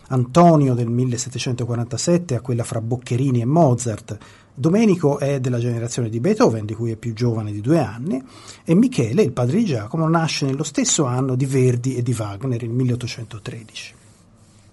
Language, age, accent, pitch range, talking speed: Italian, 30-49, native, 115-150 Hz, 165 wpm